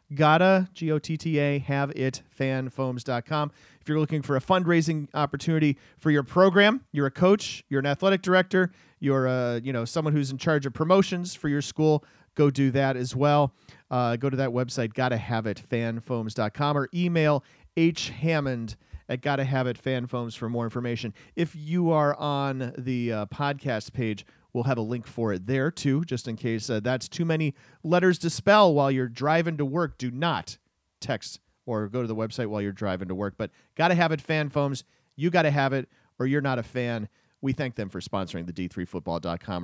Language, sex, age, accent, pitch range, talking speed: English, male, 40-59, American, 120-160 Hz, 195 wpm